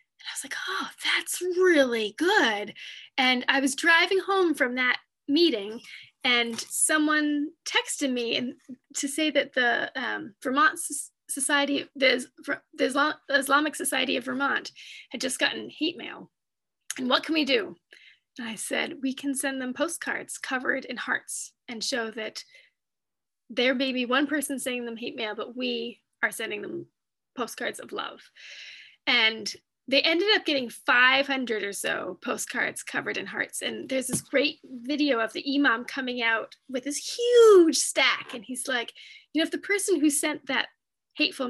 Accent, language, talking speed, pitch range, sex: American, English, 160 wpm, 250-320 Hz, female